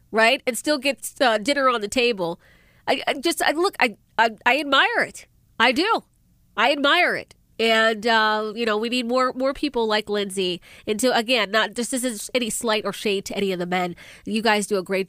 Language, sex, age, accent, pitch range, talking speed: English, female, 30-49, American, 205-270 Hz, 225 wpm